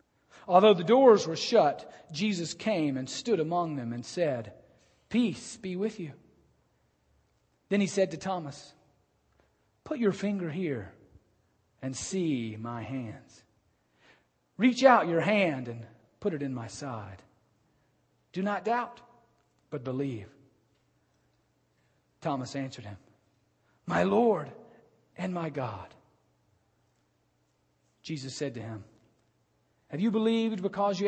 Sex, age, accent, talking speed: male, 40-59, American, 120 wpm